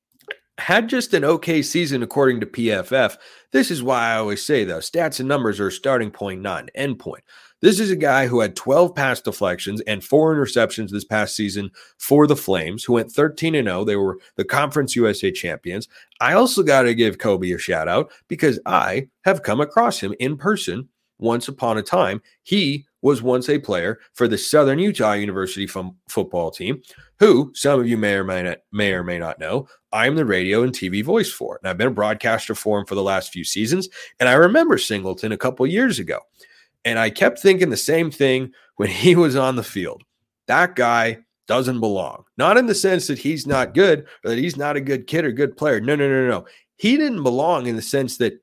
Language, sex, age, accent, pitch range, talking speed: English, male, 30-49, American, 105-150 Hz, 215 wpm